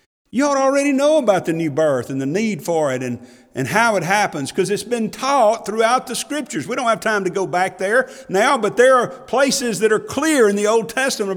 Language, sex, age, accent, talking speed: English, male, 50-69, American, 240 wpm